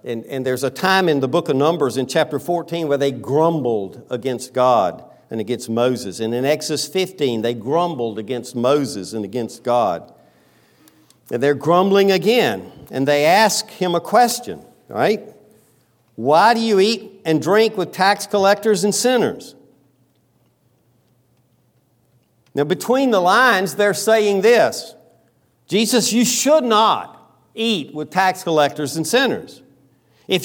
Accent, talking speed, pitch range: American, 140 wpm, 140-210 Hz